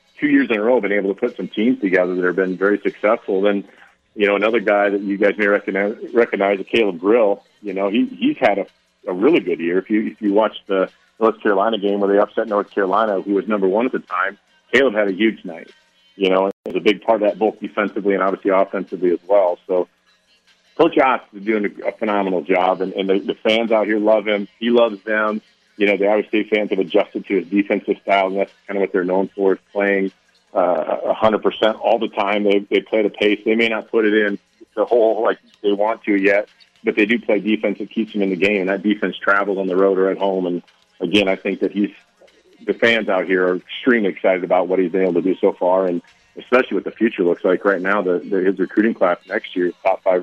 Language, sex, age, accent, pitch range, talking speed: English, male, 40-59, American, 95-110 Hz, 245 wpm